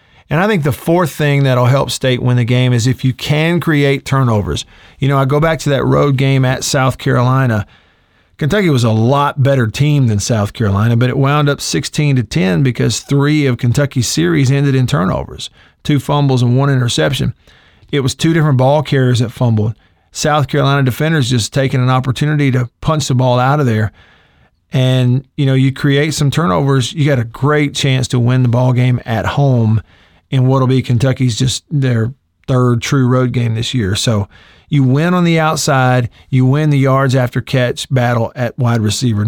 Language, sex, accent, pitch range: English, male, American, 120-145 Hz